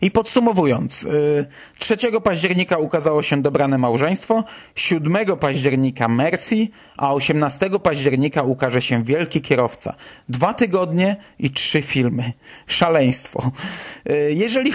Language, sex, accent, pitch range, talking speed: Polish, male, native, 140-195 Hz, 100 wpm